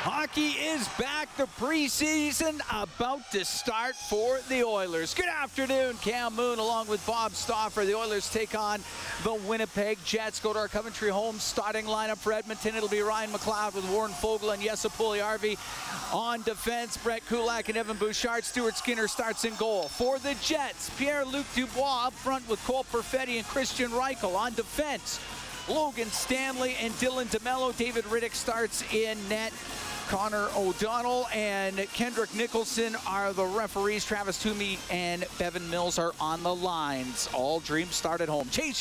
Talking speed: 160 wpm